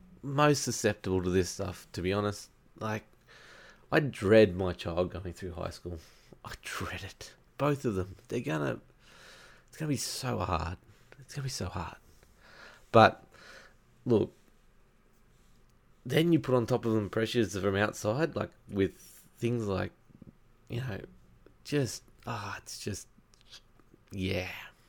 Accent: Australian